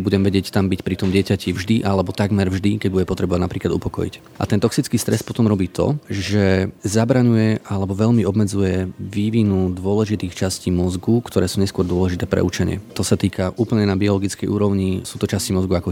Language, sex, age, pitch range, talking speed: Slovak, male, 30-49, 95-110 Hz, 190 wpm